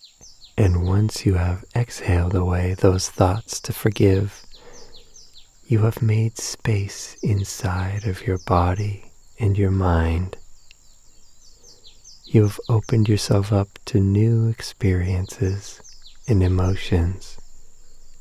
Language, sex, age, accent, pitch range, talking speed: English, male, 40-59, American, 90-110 Hz, 100 wpm